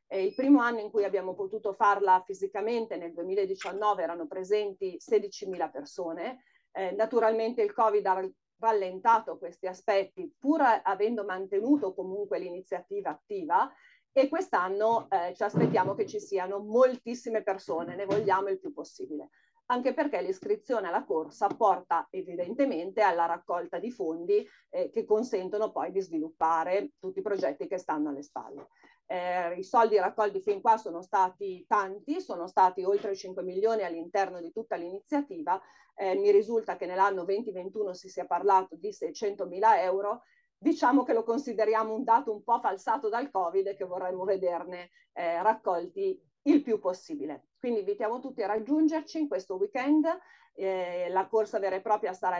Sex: female